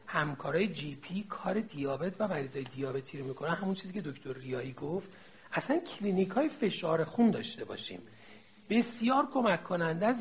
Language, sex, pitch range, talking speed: Persian, male, 165-240 Hz, 155 wpm